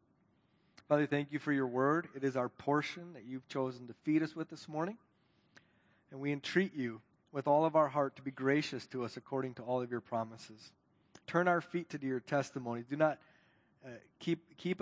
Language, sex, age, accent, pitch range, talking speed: English, male, 30-49, American, 130-165 Hz, 205 wpm